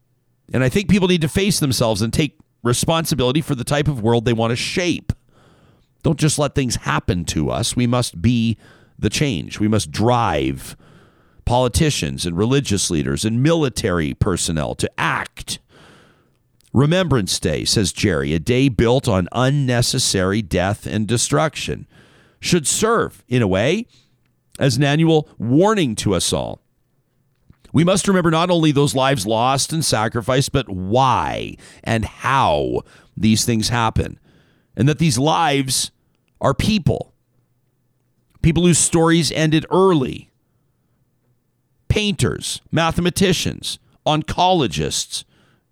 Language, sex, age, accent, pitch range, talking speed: English, male, 50-69, American, 115-160 Hz, 130 wpm